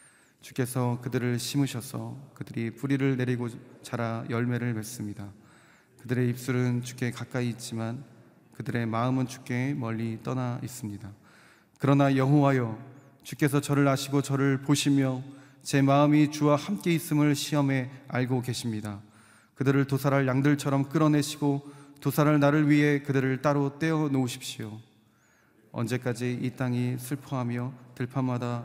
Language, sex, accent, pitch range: Korean, male, native, 120-140 Hz